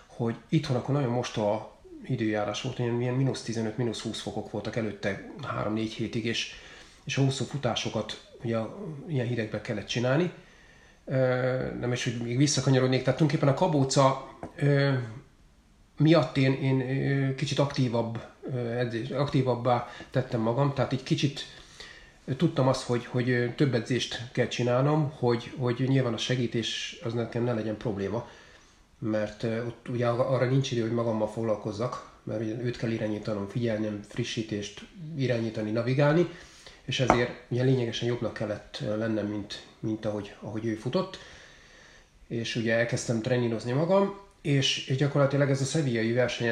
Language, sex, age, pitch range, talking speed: Hungarian, male, 30-49, 115-135 Hz, 135 wpm